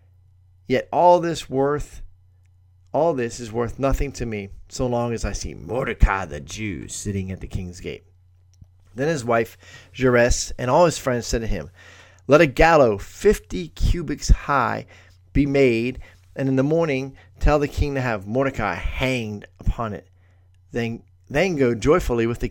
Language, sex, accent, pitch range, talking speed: English, male, American, 90-130 Hz, 165 wpm